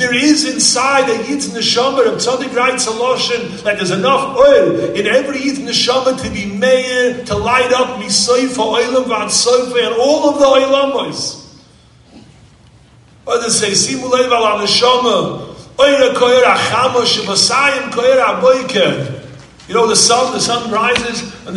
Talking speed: 125 wpm